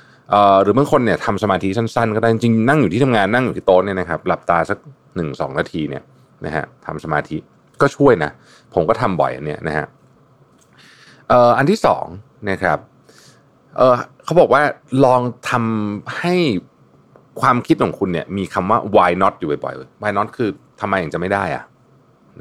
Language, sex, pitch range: Thai, male, 105-145 Hz